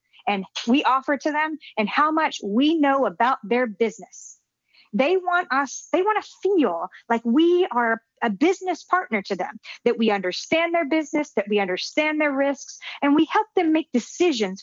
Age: 40-59